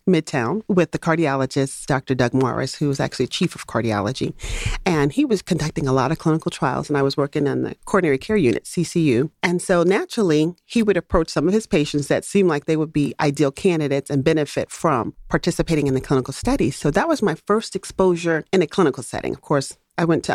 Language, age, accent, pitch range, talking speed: English, 40-59, American, 140-180 Hz, 215 wpm